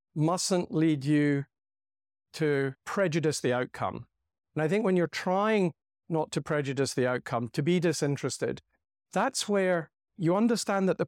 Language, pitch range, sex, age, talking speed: English, 135-170 Hz, male, 50-69, 145 wpm